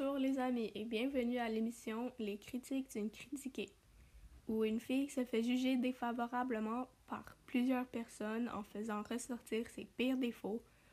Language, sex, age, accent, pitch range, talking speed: French, female, 20-39, Canadian, 210-245 Hz, 160 wpm